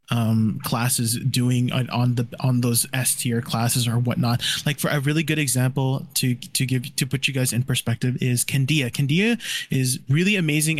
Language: English